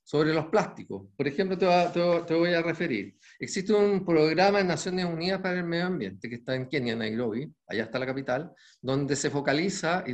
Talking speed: 190 wpm